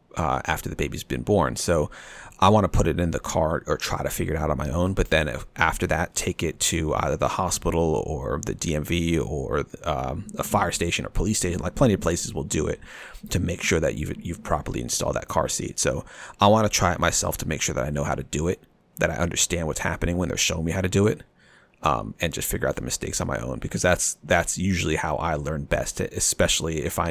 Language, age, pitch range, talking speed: English, 30-49, 80-95 Hz, 250 wpm